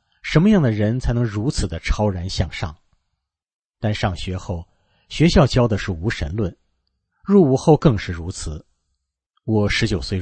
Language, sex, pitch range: Chinese, male, 90-120 Hz